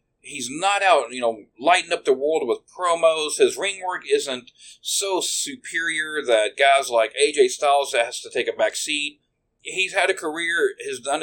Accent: American